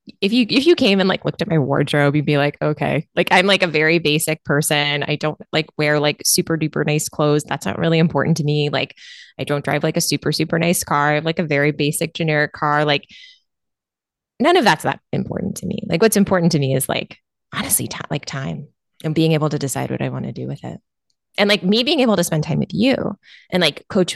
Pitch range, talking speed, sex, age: 150-195 Hz, 245 wpm, female, 20-39